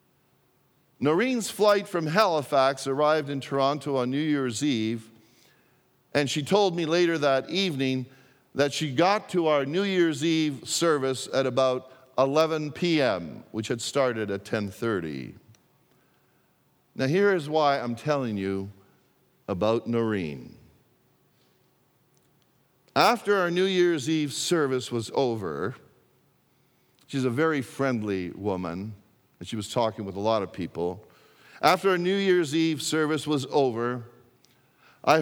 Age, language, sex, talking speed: 50-69, English, male, 130 wpm